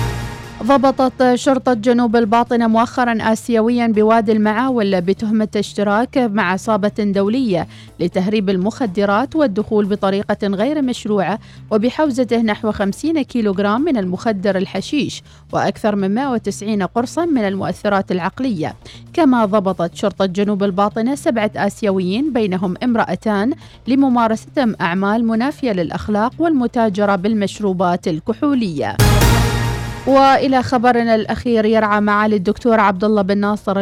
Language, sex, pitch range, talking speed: Arabic, female, 190-240 Hz, 105 wpm